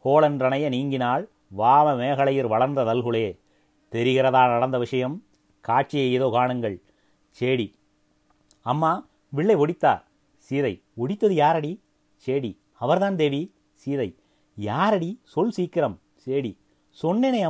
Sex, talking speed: male, 95 wpm